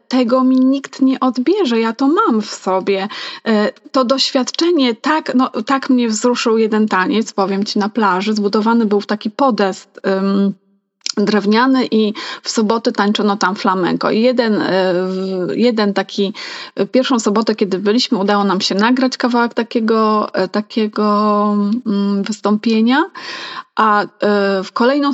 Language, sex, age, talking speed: Polish, female, 30-49, 125 wpm